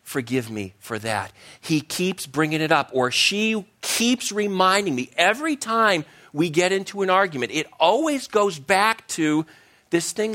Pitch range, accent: 110-160 Hz, American